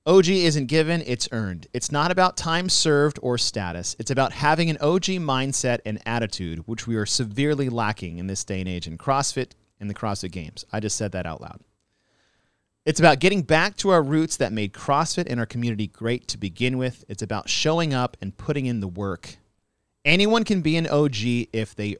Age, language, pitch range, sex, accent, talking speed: 30-49, English, 105-155 Hz, male, American, 205 wpm